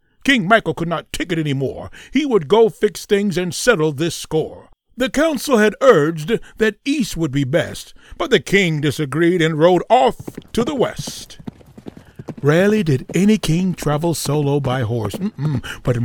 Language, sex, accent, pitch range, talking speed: English, male, American, 135-215 Hz, 170 wpm